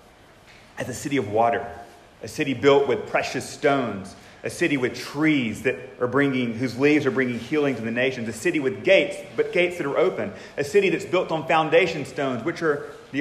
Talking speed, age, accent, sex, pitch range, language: 205 wpm, 30-49, American, male, 105-140 Hz, English